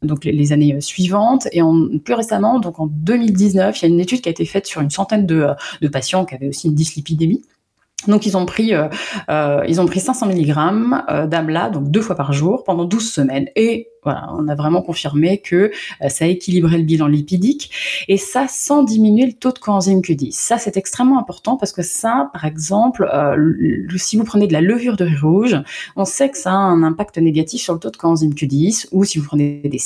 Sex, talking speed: female, 225 wpm